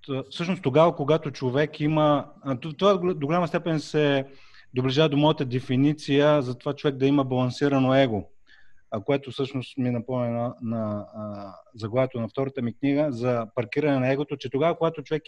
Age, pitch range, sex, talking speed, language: 30-49, 130-155 Hz, male, 165 wpm, Bulgarian